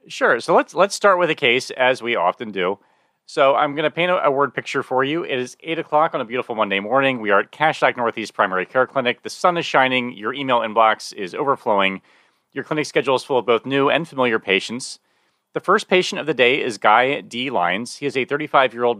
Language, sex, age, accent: English, male, 30-49, American